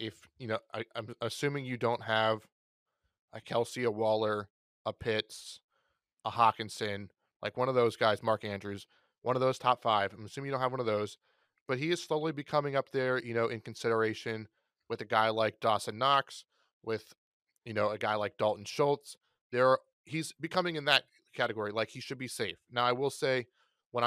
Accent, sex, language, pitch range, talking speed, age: American, male, English, 110-125 Hz, 190 wpm, 20-39